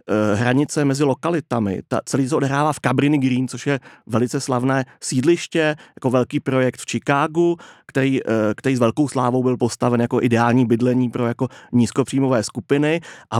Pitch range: 120-145 Hz